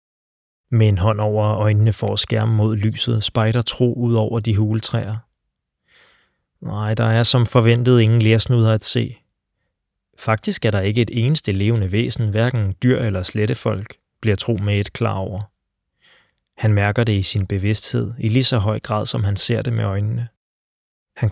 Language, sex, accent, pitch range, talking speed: Danish, male, native, 105-115 Hz, 170 wpm